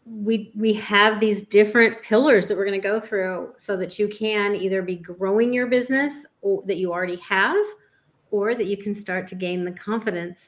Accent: American